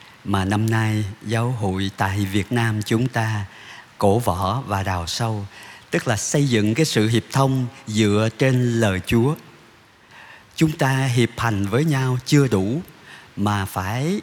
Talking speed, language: 155 wpm, Vietnamese